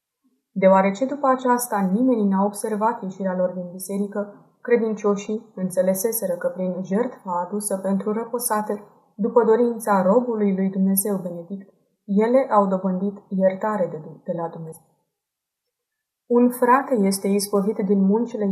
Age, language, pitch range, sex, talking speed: 20-39, Romanian, 190-225 Hz, female, 120 wpm